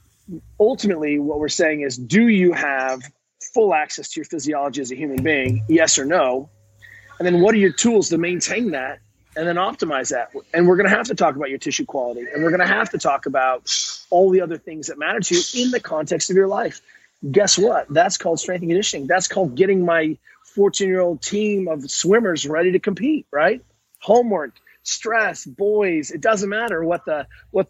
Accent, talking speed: American, 205 wpm